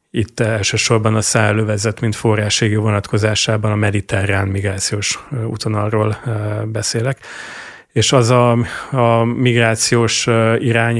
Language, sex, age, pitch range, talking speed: Hungarian, male, 30-49, 105-115 Hz, 100 wpm